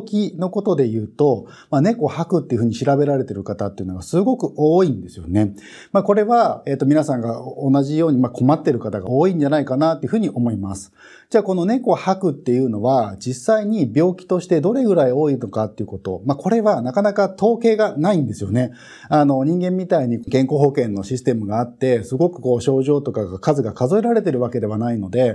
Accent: native